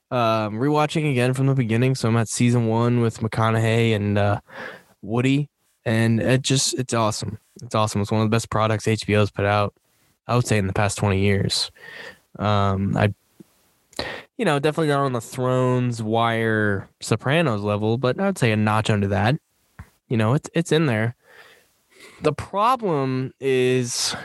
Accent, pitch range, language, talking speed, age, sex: American, 110-140 Hz, English, 170 wpm, 10-29, male